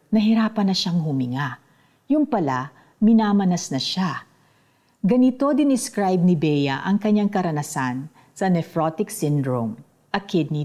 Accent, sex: native, female